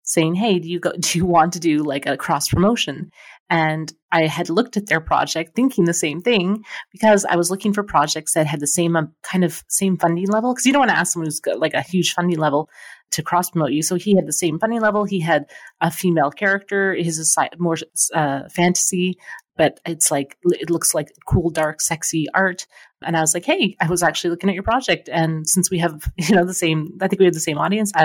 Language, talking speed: English, 240 wpm